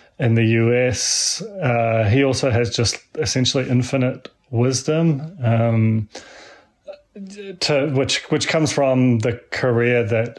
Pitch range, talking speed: 110-125 Hz, 115 wpm